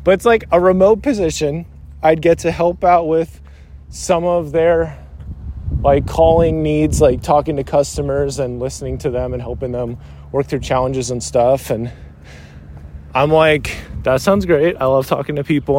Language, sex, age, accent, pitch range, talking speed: English, male, 20-39, American, 95-160 Hz, 170 wpm